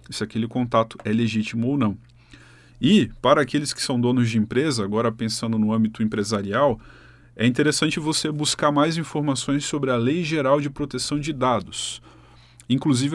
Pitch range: 110-145 Hz